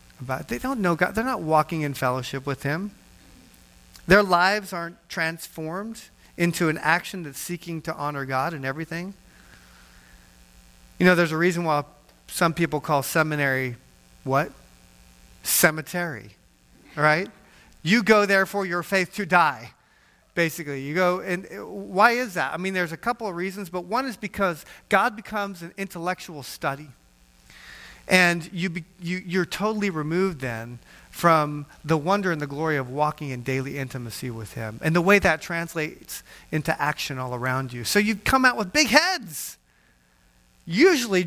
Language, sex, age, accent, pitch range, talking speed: English, male, 40-59, American, 130-185 Hz, 155 wpm